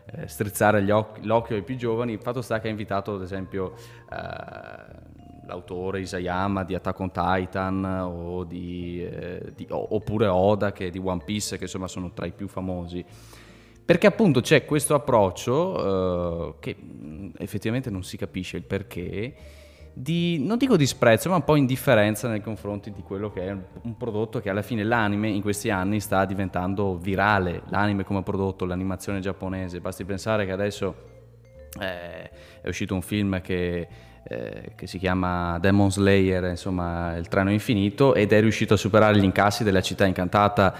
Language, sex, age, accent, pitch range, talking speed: Italian, male, 20-39, native, 95-110 Hz, 170 wpm